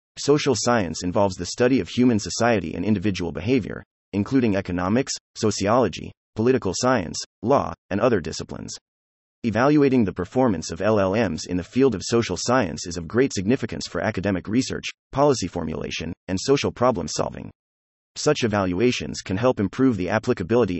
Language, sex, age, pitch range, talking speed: English, male, 30-49, 90-125 Hz, 145 wpm